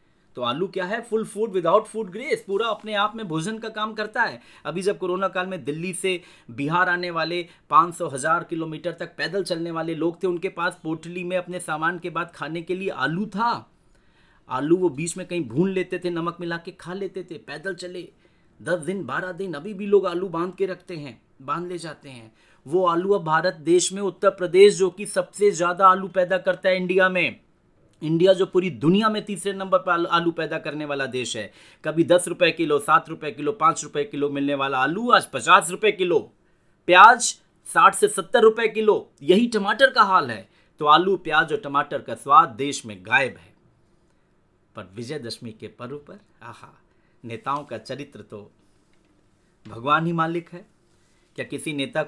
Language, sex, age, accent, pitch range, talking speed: Hindi, male, 30-49, native, 155-195 Hz, 195 wpm